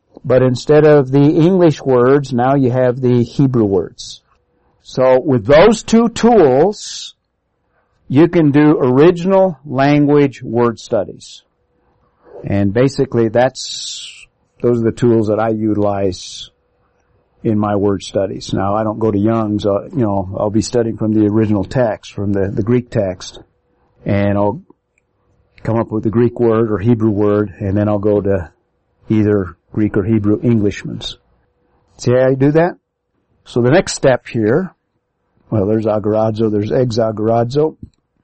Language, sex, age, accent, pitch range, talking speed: English, male, 50-69, American, 105-135 Hz, 150 wpm